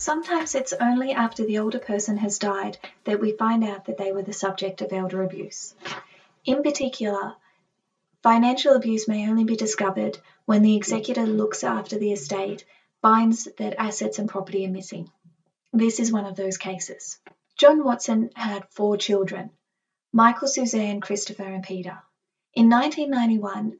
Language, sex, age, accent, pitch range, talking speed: English, female, 30-49, Australian, 190-225 Hz, 155 wpm